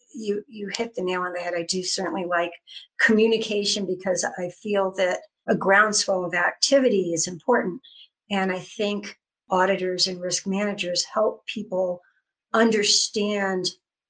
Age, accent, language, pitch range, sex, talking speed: 50-69, American, English, 180-230 Hz, female, 140 wpm